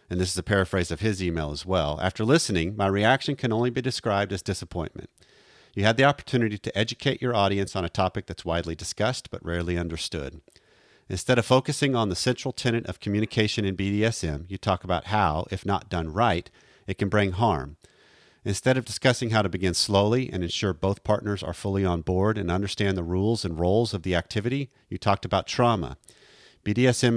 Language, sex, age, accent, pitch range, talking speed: English, male, 40-59, American, 90-115 Hz, 195 wpm